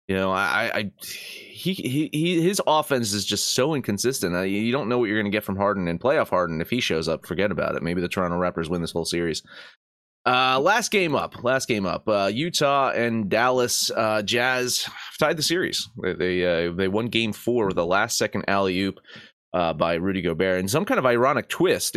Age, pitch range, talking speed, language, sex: 30-49, 100-155 Hz, 225 wpm, English, male